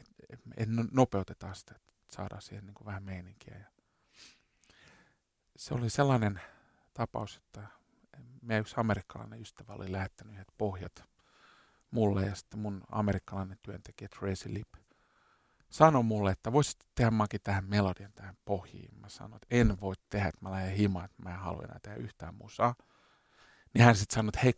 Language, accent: Finnish, native